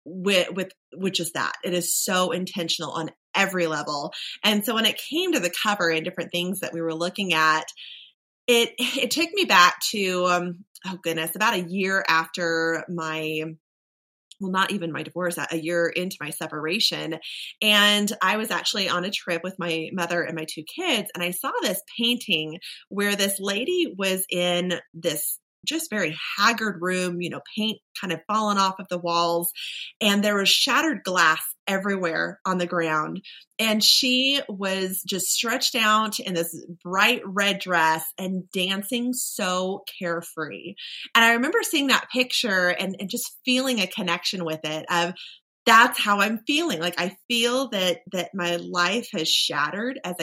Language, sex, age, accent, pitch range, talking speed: English, female, 20-39, American, 170-215 Hz, 170 wpm